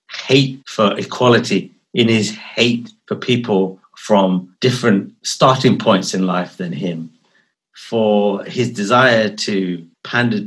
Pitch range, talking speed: 95-125 Hz, 120 wpm